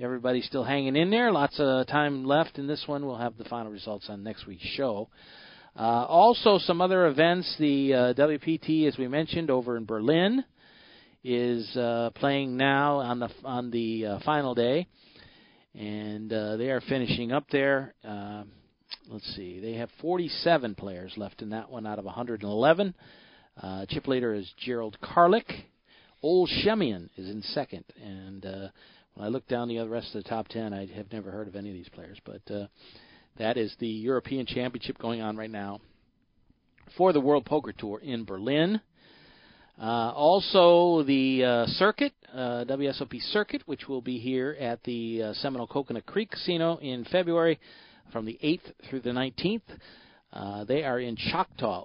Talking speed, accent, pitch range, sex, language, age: 175 wpm, American, 110-145 Hz, male, English, 50-69